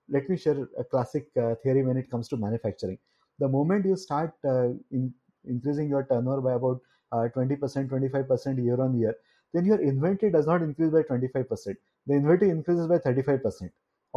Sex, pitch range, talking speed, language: male, 130-175 Hz, 170 wpm, English